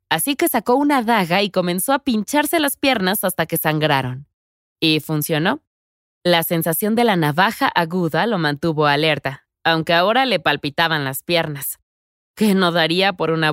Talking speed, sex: 160 wpm, female